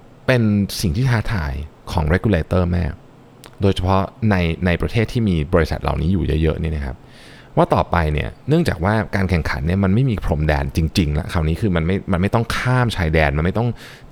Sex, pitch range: male, 80-115 Hz